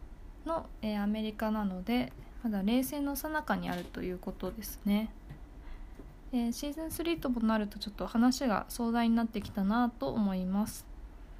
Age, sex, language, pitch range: 20-39, female, Japanese, 200-275 Hz